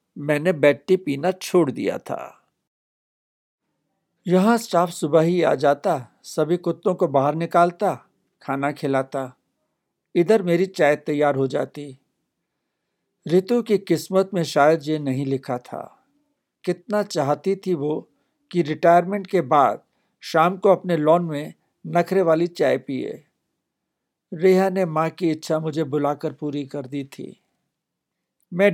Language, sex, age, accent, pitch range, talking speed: Hindi, male, 60-79, native, 145-185 Hz, 130 wpm